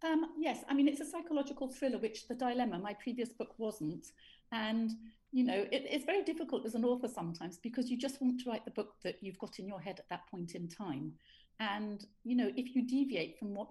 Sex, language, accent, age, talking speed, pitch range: female, English, British, 40-59, 230 wpm, 185-245 Hz